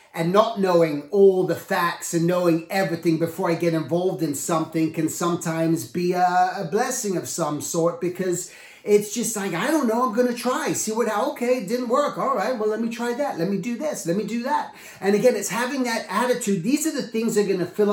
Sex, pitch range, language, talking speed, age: male, 170-220 Hz, English, 240 wpm, 30-49